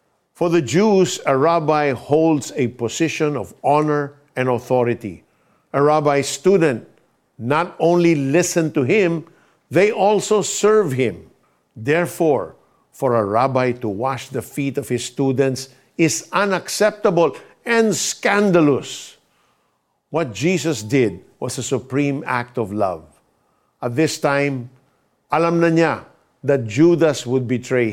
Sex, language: male, Filipino